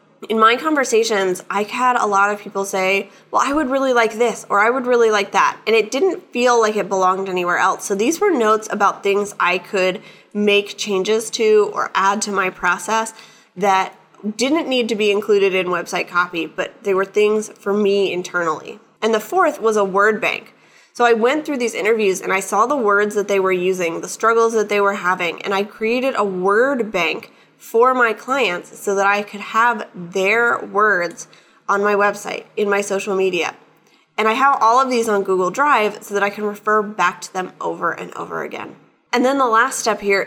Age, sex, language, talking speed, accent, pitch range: 10-29, female, English, 210 wpm, American, 195-230 Hz